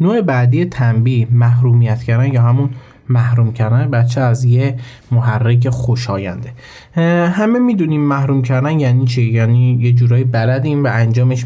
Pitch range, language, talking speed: 120-145 Hz, Persian, 135 wpm